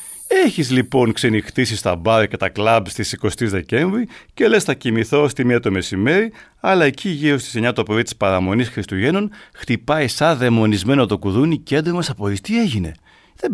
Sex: male